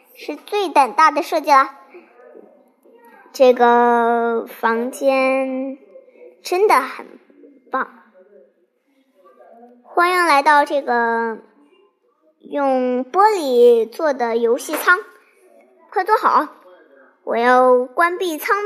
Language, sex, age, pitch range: Chinese, male, 20-39, 245-345 Hz